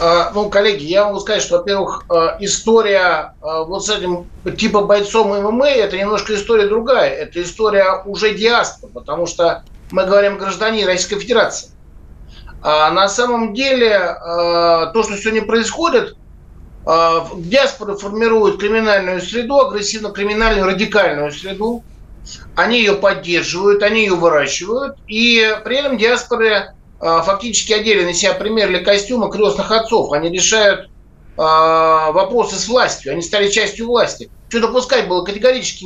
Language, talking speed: Russian, 130 wpm